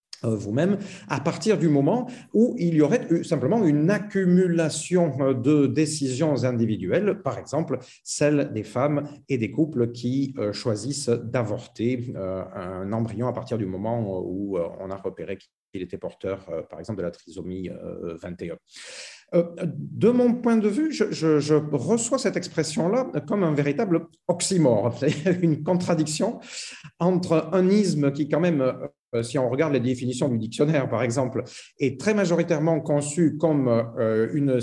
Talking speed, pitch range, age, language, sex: 145 wpm, 120-170 Hz, 40-59, French, male